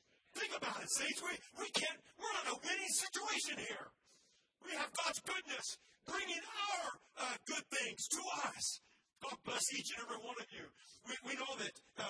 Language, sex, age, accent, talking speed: English, male, 40-59, American, 185 wpm